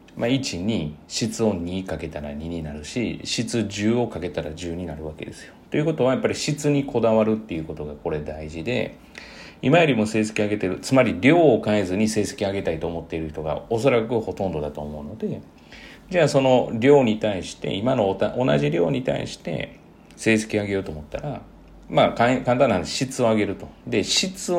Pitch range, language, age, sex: 85-135 Hz, Japanese, 40-59, male